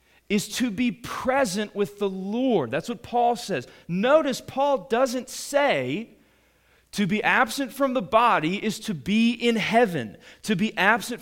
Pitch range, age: 165-225 Hz, 40-59